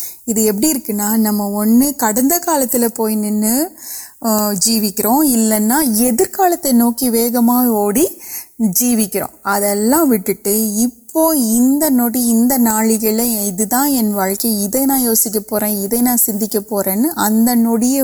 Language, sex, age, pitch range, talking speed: Urdu, female, 30-49, 205-240 Hz, 70 wpm